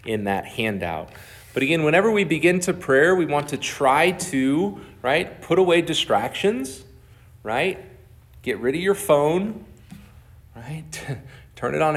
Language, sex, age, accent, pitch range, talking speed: English, male, 30-49, American, 105-140 Hz, 145 wpm